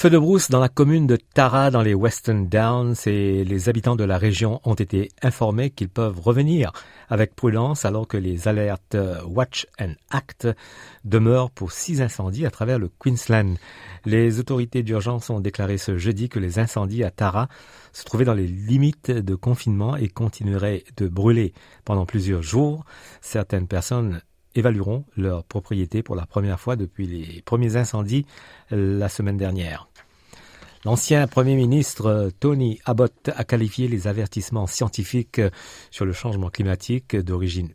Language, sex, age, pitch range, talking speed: French, male, 50-69, 95-125 Hz, 155 wpm